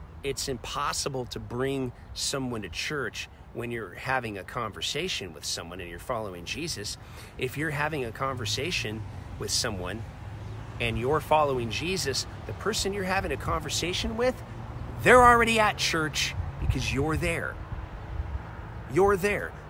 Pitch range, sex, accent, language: 95-155 Hz, male, American, English